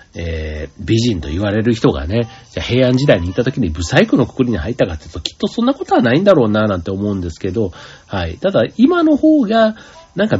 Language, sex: Japanese, male